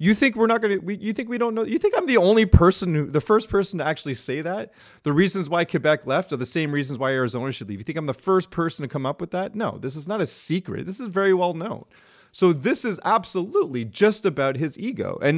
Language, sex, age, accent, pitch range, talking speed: English, male, 30-49, American, 125-180 Hz, 270 wpm